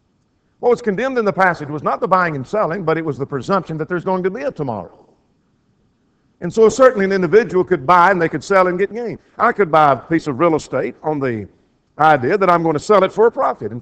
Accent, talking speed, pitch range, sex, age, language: American, 255 wpm, 135-195 Hz, male, 50-69, English